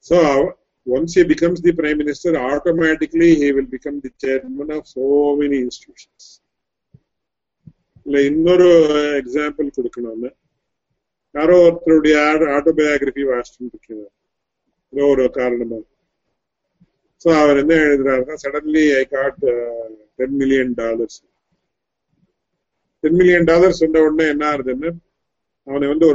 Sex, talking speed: male, 85 wpm